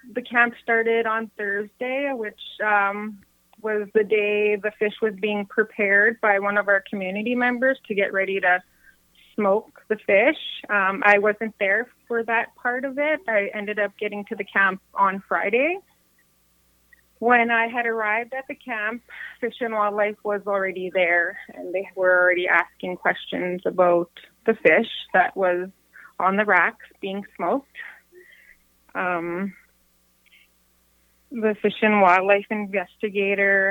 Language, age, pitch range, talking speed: English, 20-39, 185-230 Hz, 145 wpm